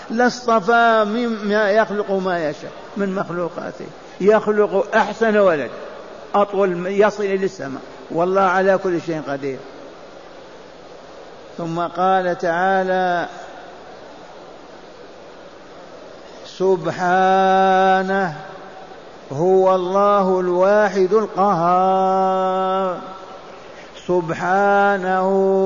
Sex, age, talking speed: male, 50-69, 65 wpm